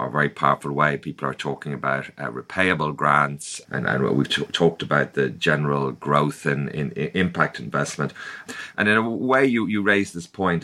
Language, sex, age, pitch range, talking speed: English, male, 30-49, 75-90 Hz, 190 wpm